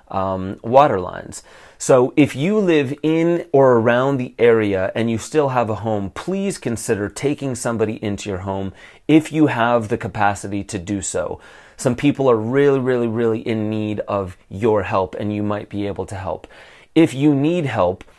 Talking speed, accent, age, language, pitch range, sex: 180 wpm, American, 30-49, English, 105-140 Hz, male